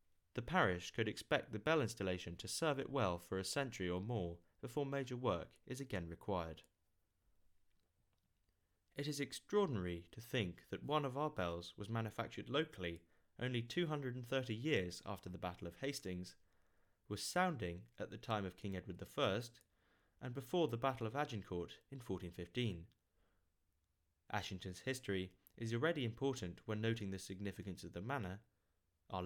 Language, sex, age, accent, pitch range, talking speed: English, male, 30-49, British, 90-125 Hz, 150 wpm